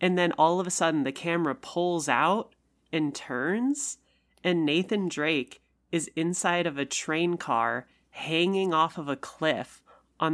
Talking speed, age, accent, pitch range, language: 155 wpm, 30-49, American, 140-160 Hz, English